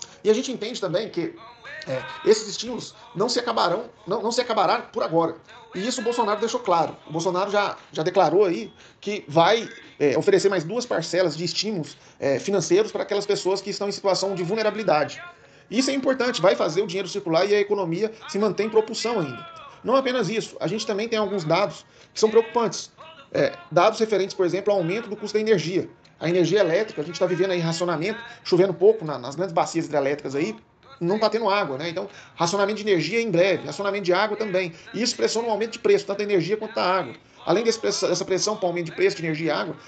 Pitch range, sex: 175-220 Hz, male